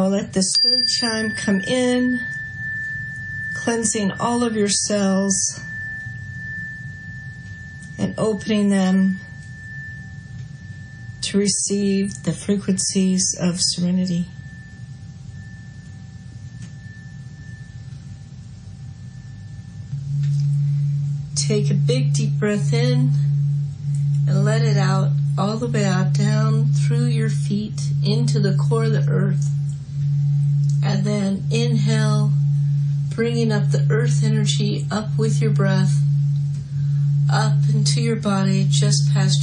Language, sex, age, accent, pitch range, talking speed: English, female, 40-59, American, 135-145 Hz, 95 wpm